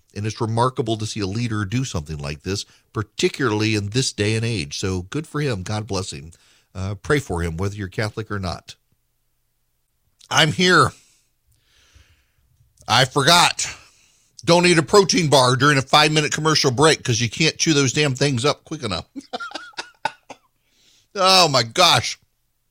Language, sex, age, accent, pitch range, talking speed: English, male, 50-69, American, 95-135 Hz, 160 wpm